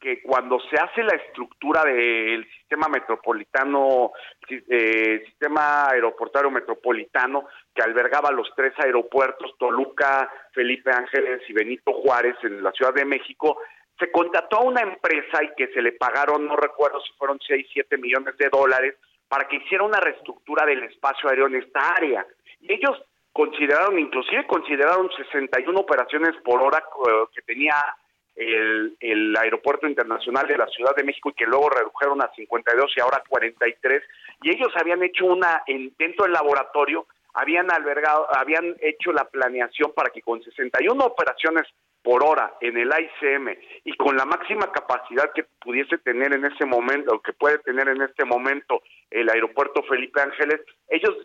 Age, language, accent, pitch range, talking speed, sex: 40-59, Spanish, Mexican, 130-175 Hz, 160 wpm, male